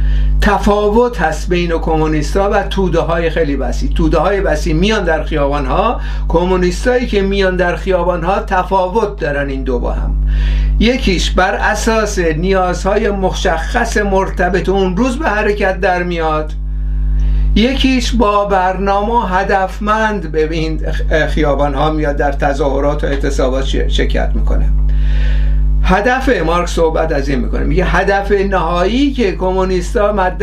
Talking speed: 130 wpm